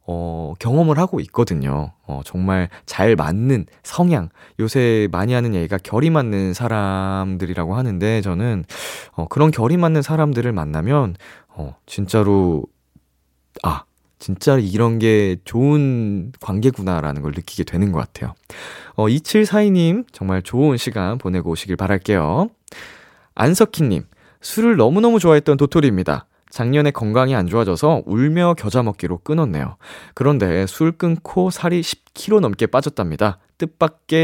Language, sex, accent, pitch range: Korean, male, native, 95-150 Hz